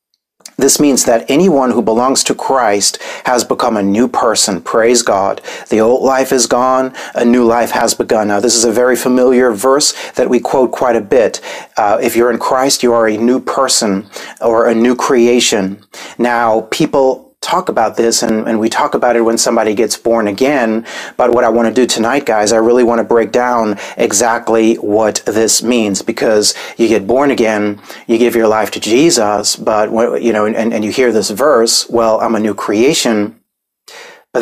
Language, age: English, 40-59